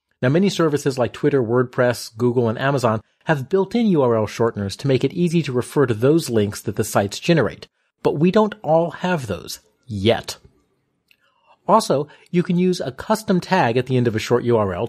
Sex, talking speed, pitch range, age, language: male, 190 wpm, 115-190 Hz, 40-59, English